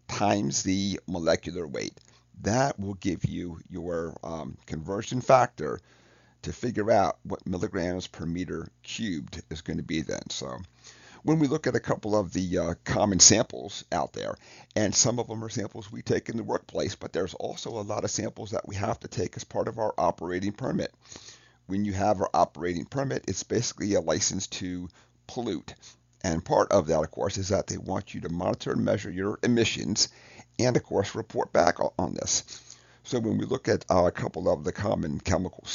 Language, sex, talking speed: English, male, 195 wpm